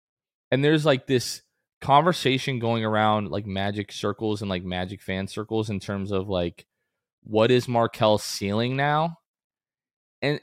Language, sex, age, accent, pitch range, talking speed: English, male, 20-39, American, 100-130 Hz, 145 wpm